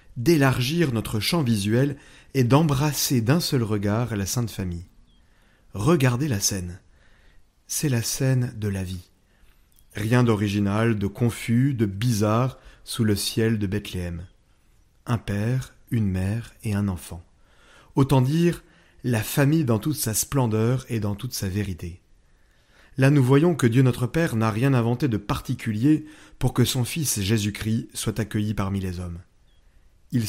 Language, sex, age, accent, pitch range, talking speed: French, male, 30-49, French, 105-130 Hz, 150 wpm